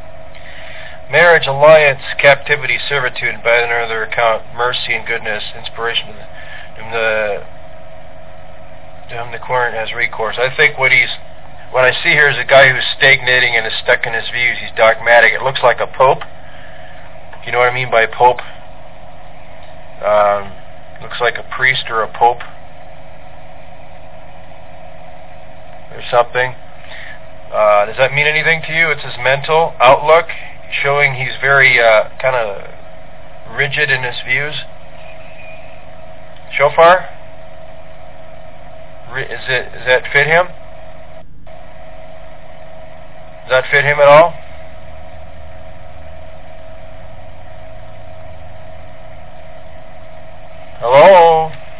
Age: 40-59